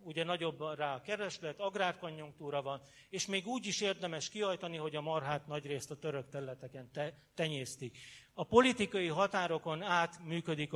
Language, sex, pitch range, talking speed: Hungarian, male, 145-185 Hz, 145 wpm